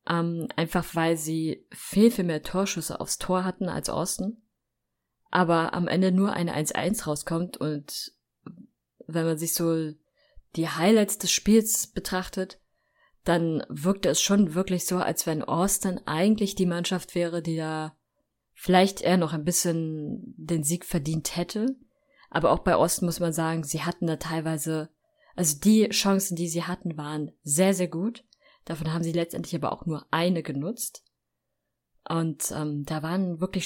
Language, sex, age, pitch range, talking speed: German, female, 20-39, 160-185 Hz, 155 wpm